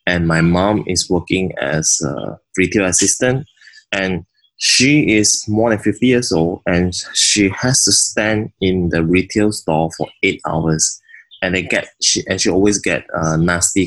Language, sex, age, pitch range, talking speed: English, male, 20-39, 85-105 Hz, 170 wpm